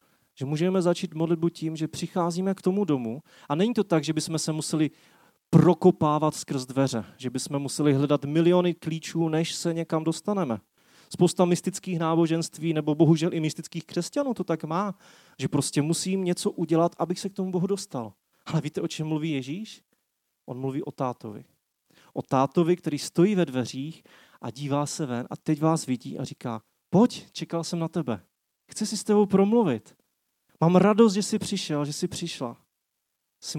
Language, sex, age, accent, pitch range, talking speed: Czech, male, 30-49, native, 145-180 Hz, 175 wpm